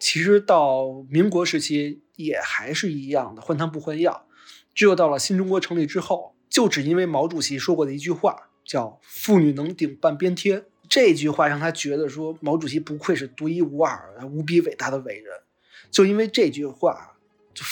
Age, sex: 30-49, male